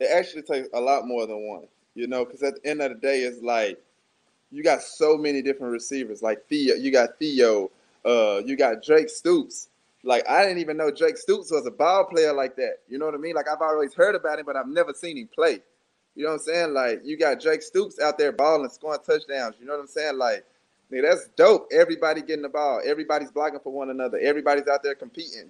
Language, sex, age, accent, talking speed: English, male, 20-39, American, 240 wpm